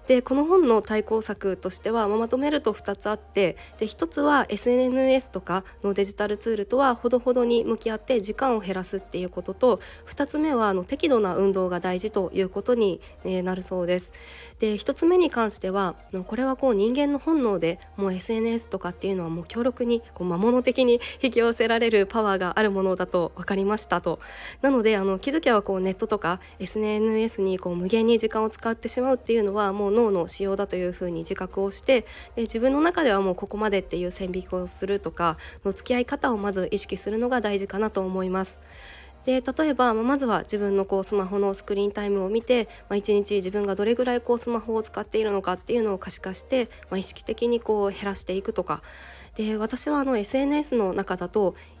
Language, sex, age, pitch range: Japanese, female, 20-39, 190-240 Hz